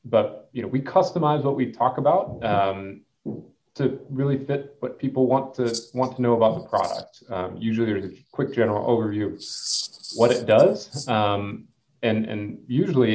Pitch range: 100-130 Hz